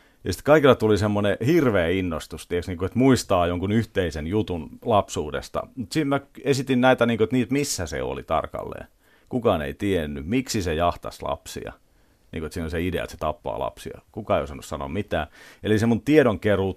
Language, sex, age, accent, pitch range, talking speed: Finnish, male, 40-59, native, 80-115 Hz, 170 wpm